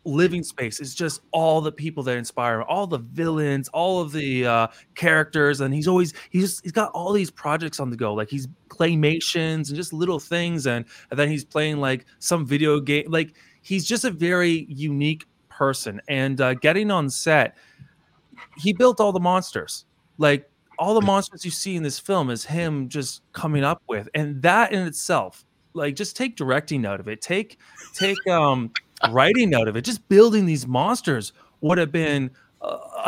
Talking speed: 190 wpm